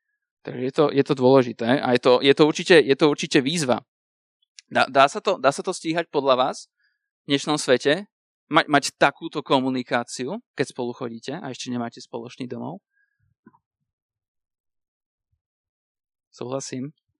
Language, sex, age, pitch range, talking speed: Slovak, male, 20-39, 125-145 Hz, 145 wpm